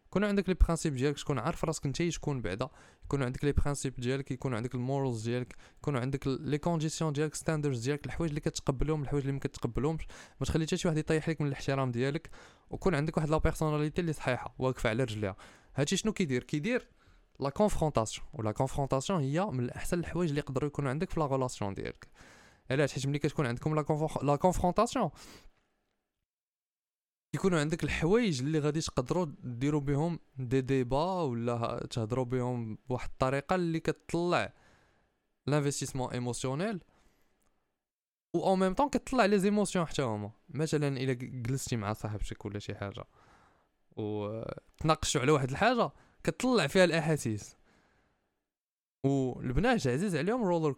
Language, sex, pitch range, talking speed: Arabic, male, 125-165 Hz, 155 wpm